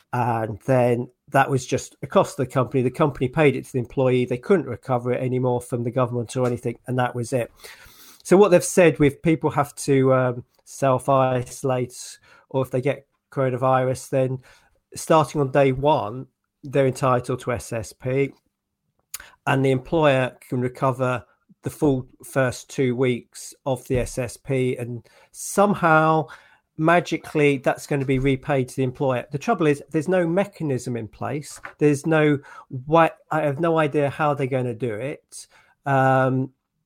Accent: British